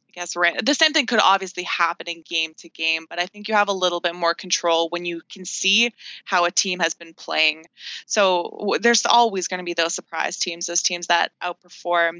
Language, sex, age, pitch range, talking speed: English, female, 20-39, 175-200 Hz, 230 wpm